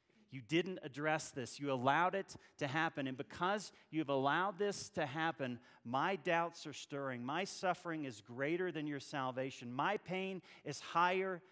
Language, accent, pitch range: English, American, 130-160 Hz